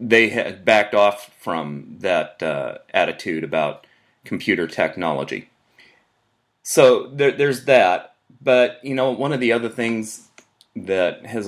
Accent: American